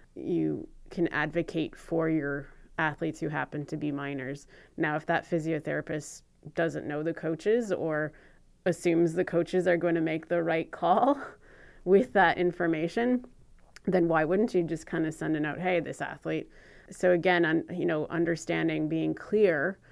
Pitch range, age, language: 160-185 Hz, 30-49, English